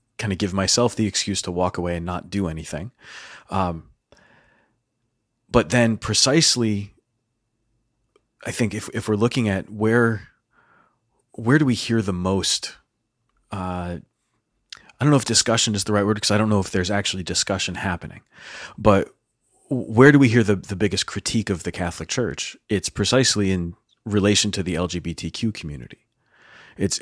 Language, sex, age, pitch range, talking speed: English, male, 30-49, 95-115 Hz, 160 wpm